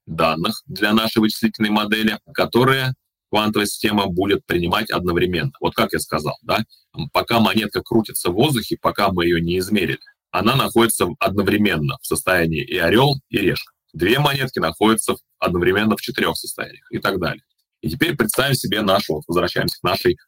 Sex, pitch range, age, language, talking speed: male, 105-125 Hz, 30-49, Russian, 155 wpm